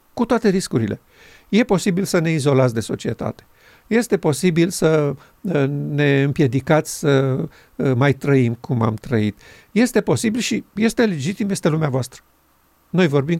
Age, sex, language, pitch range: 50-69, male, Romanian, 140-195 Hz